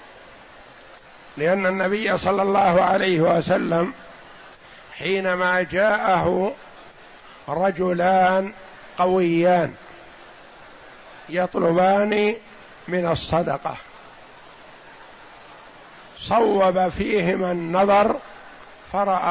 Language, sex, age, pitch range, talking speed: Arabic, male, 60-79, 170-195 Hz, 55 wpm